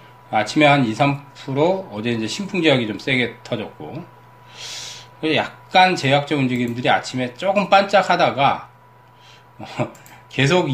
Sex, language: male, Korean